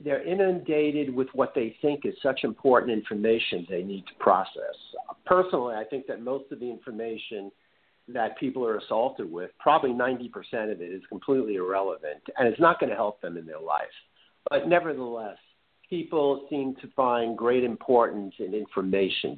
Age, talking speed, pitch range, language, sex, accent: 50-69, 165 wpm, 120-170 Hz, English, male, American